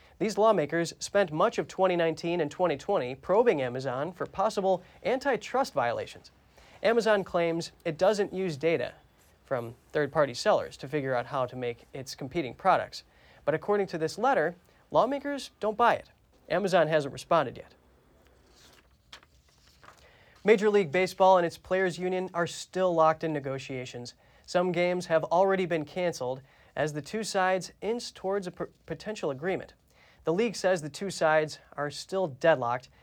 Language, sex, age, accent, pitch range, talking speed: English, male, 30-49, American, 150-190 Hz, 145 wpm